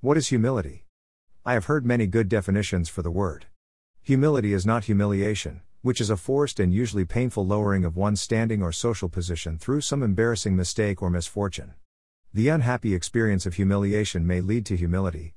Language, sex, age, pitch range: English, male, 50-69, 90-115 Hz